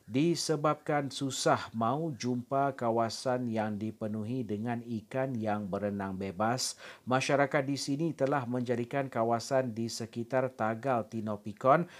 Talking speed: 110 wpm